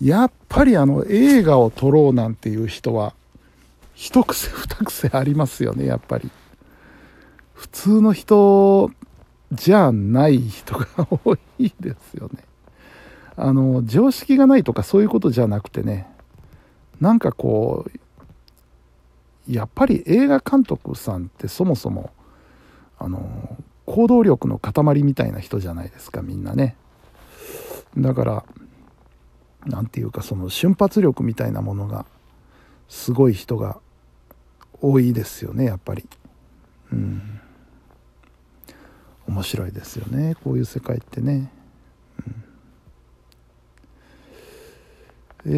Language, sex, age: Japanese, male, 60-79